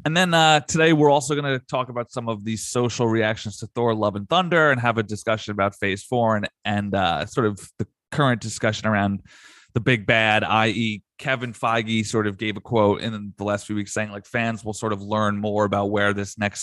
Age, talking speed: 20-39, 230 wpm